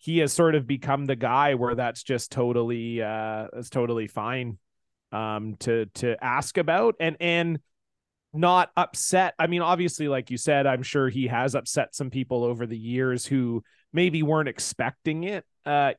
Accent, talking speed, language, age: American, 175 wpm, English, 30-49